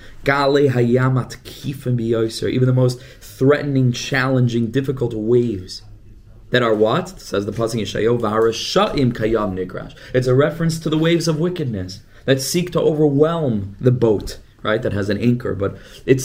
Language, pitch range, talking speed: English, 115-150 Hz, 120 wpm